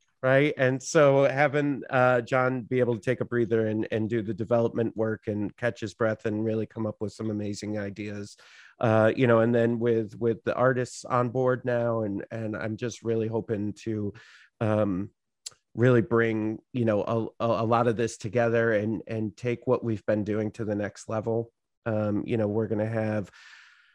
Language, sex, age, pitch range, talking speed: English, male, 30-49, 110-125 Hz, 195 wpm